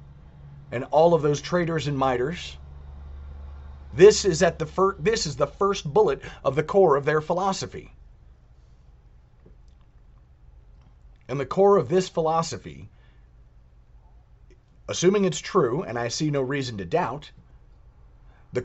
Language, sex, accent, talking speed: English, male, American, 130 wpm